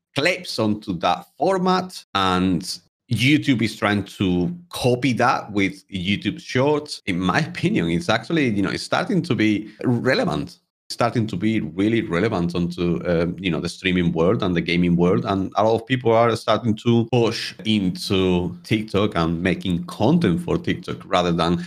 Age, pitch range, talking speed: 30-49, 95-130 Hz, 170 wpm